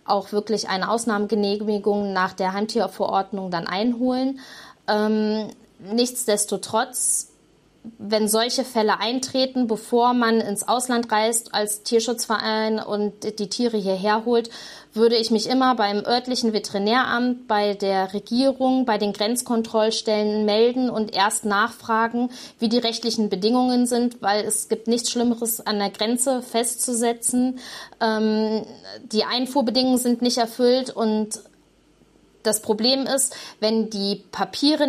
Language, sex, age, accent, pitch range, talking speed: German, female, 20-39, German, 210-240 Hz, 120 wpm